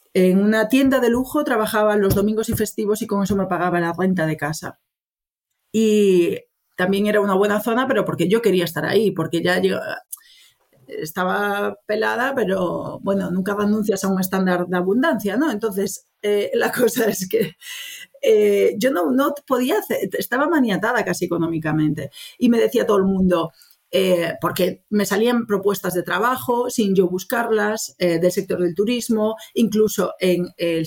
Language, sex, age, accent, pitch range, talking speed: Spanish, female, 40-59, Spanish, 180-235 Hz, 165 wpm